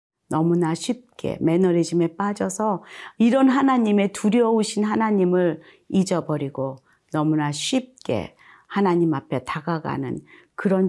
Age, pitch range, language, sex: 40-59, 160-200 Hz, Korean, female